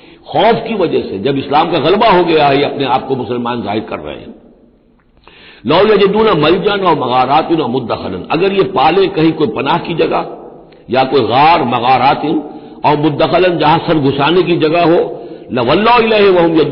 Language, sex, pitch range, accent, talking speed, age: Hindi, male, 125-175 Hz, native, 165 wpm, 60-79